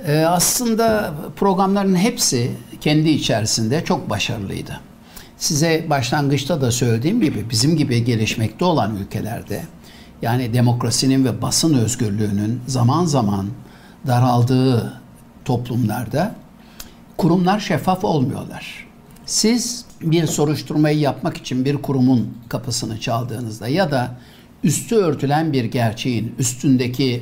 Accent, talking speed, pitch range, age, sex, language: native, 100 wpm, 125-185 Hz, 60-79, male, Turkish